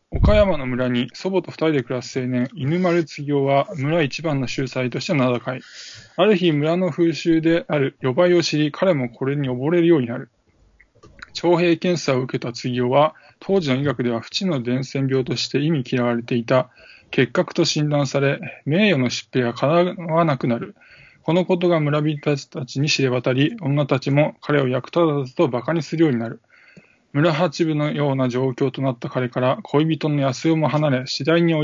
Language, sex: Japanese, male